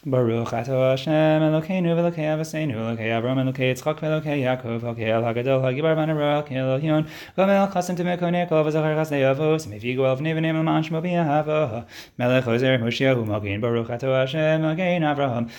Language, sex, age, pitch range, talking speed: English, male, 20-39, 120-155 Hz, 195 wpm